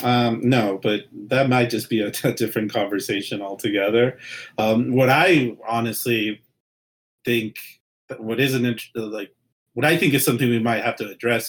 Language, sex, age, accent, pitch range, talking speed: English, male, 40-59, American, 110-135 Hz, 160 wpm